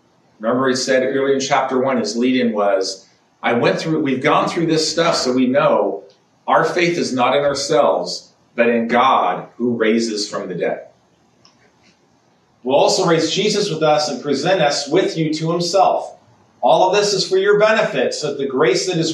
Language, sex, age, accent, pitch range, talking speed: English, male, 40-59, American, 125-170 Hz, 195 wpm